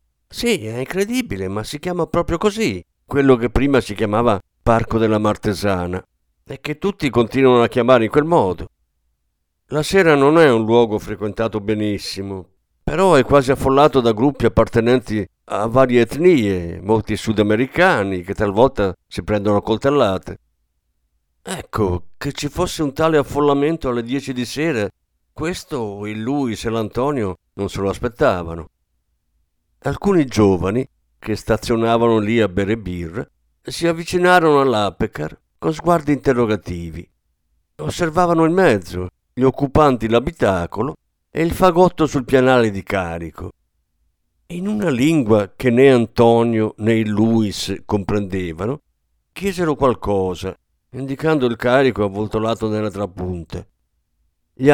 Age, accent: 50-69, native